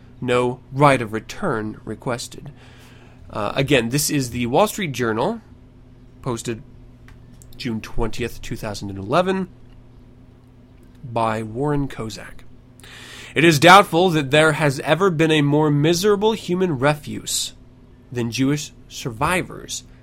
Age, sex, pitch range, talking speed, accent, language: 30-49, male, 120-150 Hz, 110 wpm, American, English